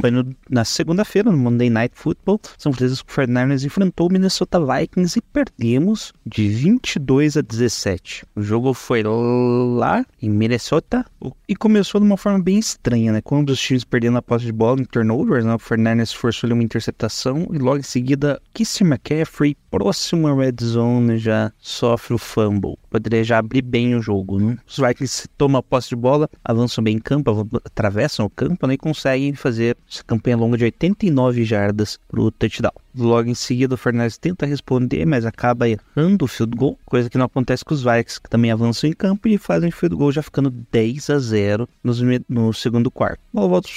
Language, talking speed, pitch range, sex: Portuguese, 185 wpm, 115-150 Hz, male